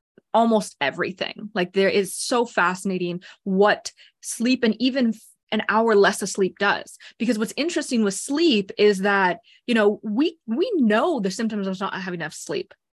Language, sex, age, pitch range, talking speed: English, female, 20-39, 195-235 Hz, 165 wpm